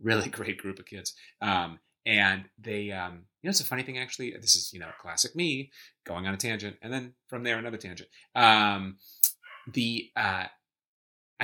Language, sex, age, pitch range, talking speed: English, male, 30-49, 95-120 Hz, 185 wpm